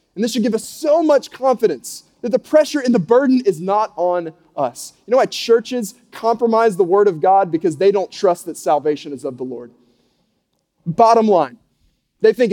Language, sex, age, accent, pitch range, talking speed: English, male, 30-49, American, 145-205 Hz, 195 wpm